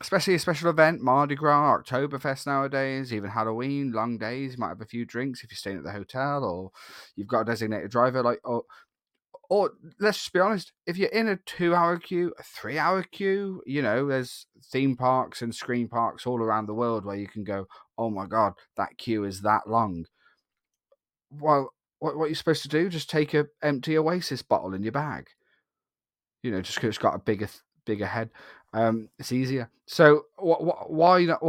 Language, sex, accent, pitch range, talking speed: English, male, British, 115-175 Hz, 195 wpm